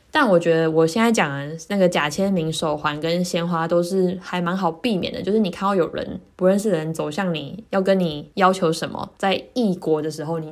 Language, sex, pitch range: Chinese, female, 165-200 Hz